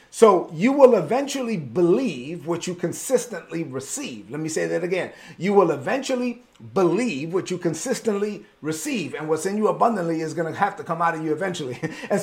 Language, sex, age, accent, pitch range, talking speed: English, male, 40-59, American, 170-235 Hz, 185 wpm